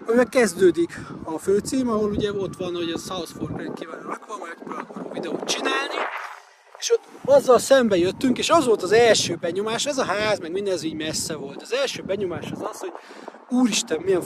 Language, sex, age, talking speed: Hungarian, male, 30-49, 175 wpm